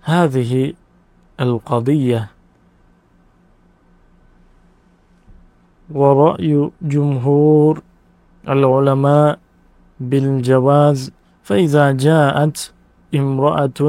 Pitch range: 130-150 Hz